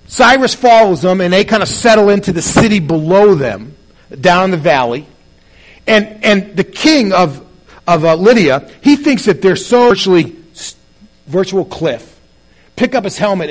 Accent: American